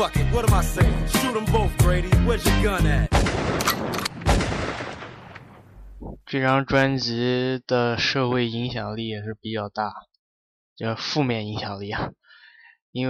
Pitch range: 105-125 Hz